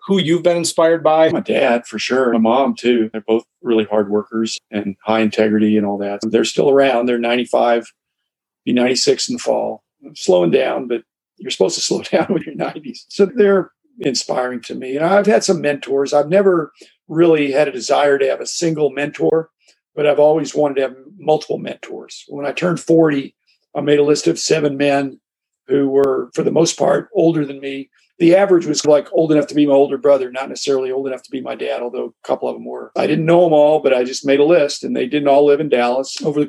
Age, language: 50-69, English